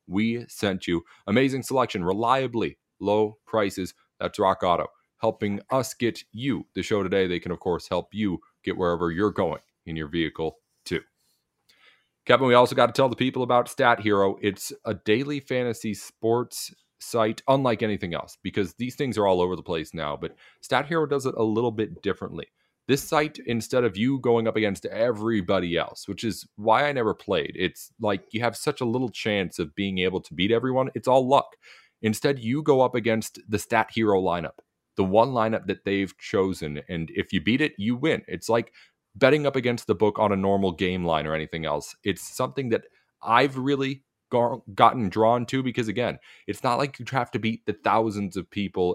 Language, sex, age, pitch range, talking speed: English, male, 30-49, 95-125 Hz, 195 wpm